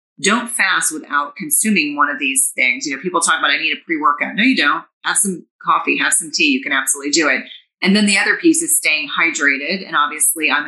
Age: 30-49